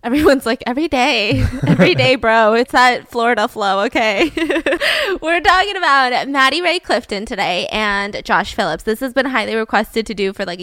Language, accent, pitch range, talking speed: English, American, 215-275 Hz, 175 wpm